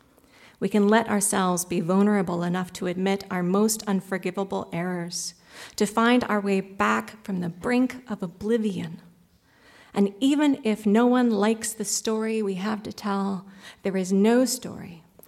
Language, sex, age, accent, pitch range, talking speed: English, female, 40-59, American, 195-235 Hz, 155 wpm